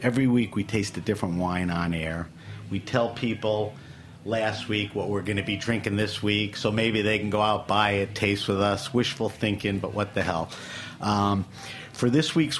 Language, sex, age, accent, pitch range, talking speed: English, male, 50-69, American, 95-115 Hz, 205 wpm